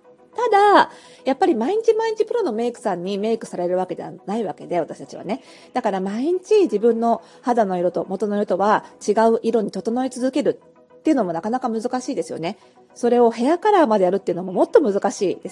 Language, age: Japanese, 40-59